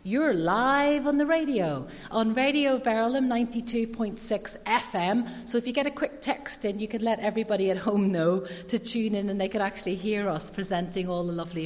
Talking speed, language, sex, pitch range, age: 195 wpm, English, female, 200-260 Hz, 40-59